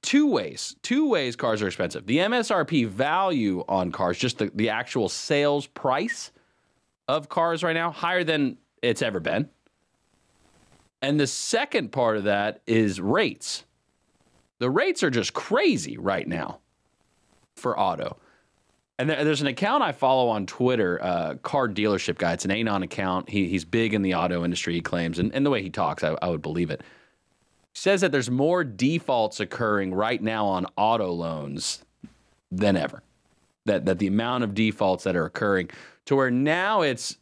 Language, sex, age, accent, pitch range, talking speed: English, male, 30-49, American, 95-145 Hz, 175 wpm